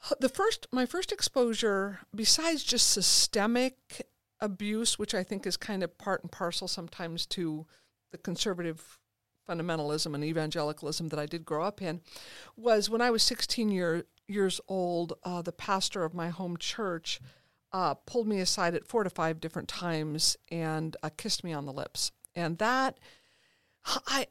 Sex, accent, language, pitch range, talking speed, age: female, American, English, 160-210 Hz, 165 wpm, 50-69